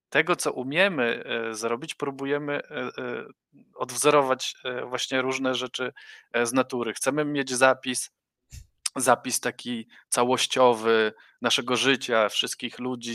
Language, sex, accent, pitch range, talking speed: Polish, male, native, 115-130 Hz, 95 wpm